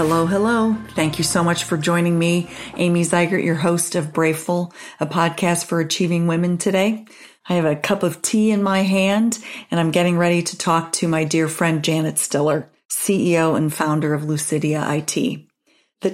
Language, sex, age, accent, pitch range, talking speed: English, female, 40-59, American, 155-175 Hz, 180 wpm